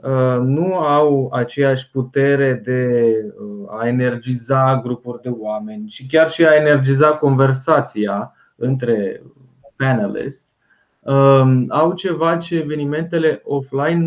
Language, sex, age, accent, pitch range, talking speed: Romanian, male, 20-39, native, 115-150 Hz, 100 wpm